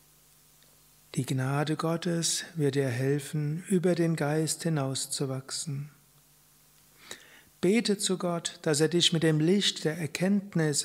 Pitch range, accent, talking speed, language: 145-170 Hz, German, 115 wpm, German